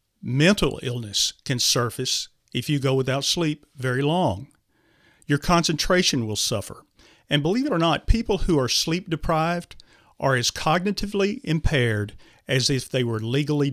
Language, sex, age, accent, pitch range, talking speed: English, male, 50-69, American, 125-160 Hz, 150 wpm